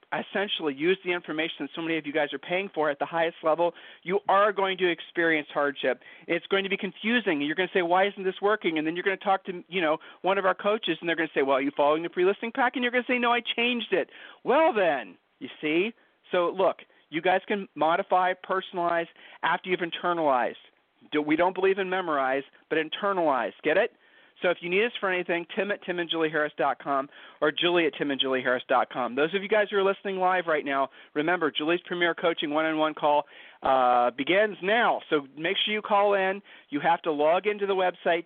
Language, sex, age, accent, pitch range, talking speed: English, male, 40-59, American, 155-195 Hz, 220 wpm